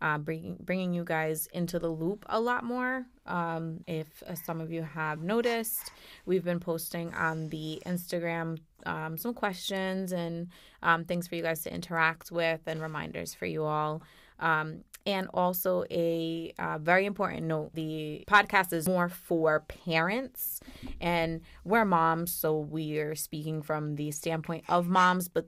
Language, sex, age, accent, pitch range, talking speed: English, female, 20-39, American, 160-180 Hz, 165 wpm